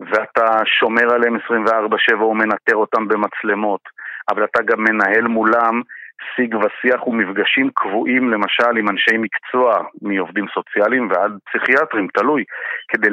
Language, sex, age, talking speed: Hebrew, male, 50-69, 120 wpm